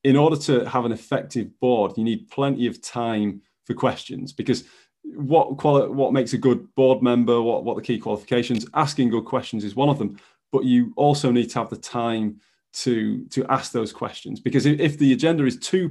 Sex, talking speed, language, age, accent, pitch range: male, 210 wpm, English, 30-49, British, 120-145 Hz